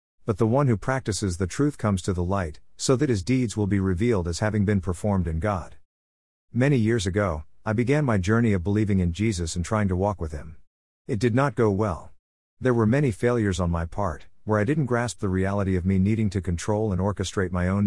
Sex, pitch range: male, 90-115 Hz